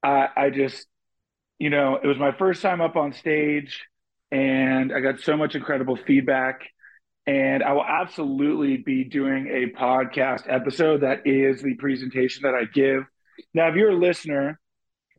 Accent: American